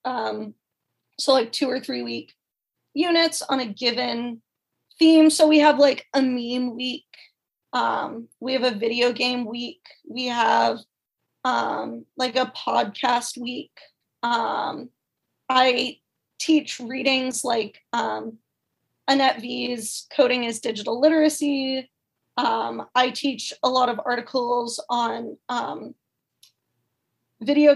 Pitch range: 235-275 Hz